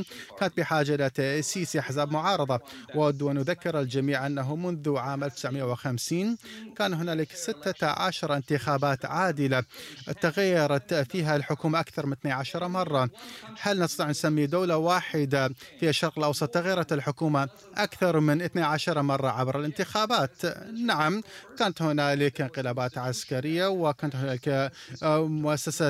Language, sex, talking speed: Arabic, male, 110 wpm